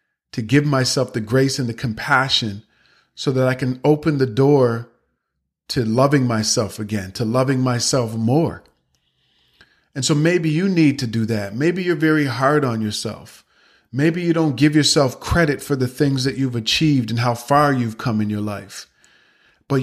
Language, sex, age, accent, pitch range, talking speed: English, male, 40-59, American, 115-145 Hz, 175 wpm